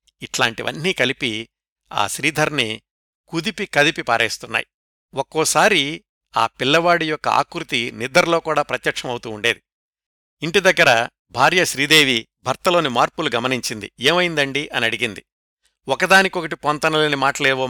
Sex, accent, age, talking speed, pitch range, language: male, native, 60-79, 95 wpm, 125-160 Hz, Telugu